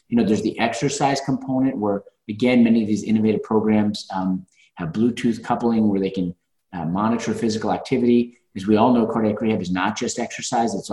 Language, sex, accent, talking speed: English, male, American, 190 wpm